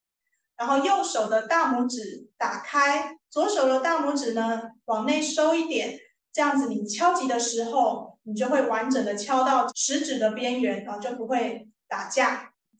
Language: Chinese